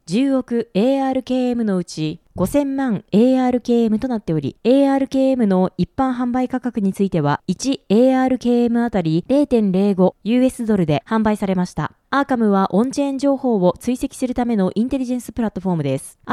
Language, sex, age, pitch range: Japanese, female, 20-39, 185-260 Hz